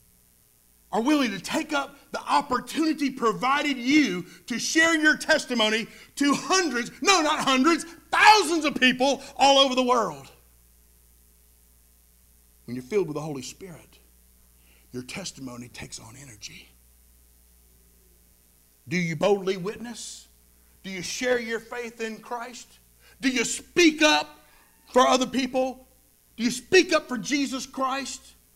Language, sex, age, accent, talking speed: English, male, 50-69, American, 130 wpm